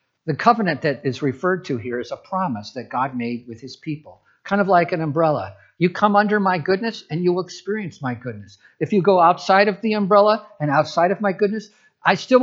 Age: 50-69